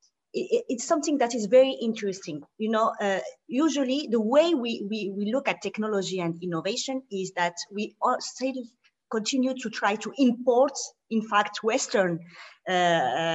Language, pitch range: English, 200-265 Hz